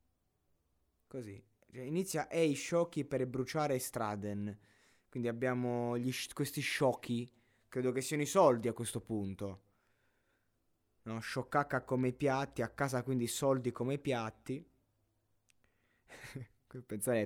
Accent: native